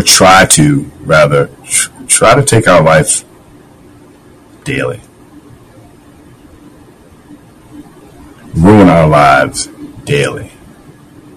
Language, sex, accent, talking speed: English, male, American, 70 wpm